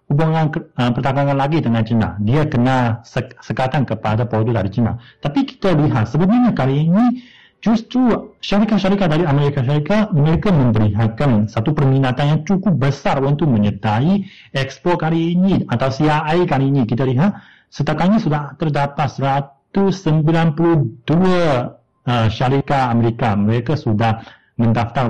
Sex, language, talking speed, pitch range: male, Malay, 125 wpm, 120-160 Hz